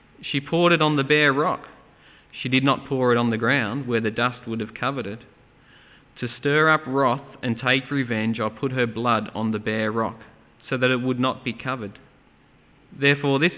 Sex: male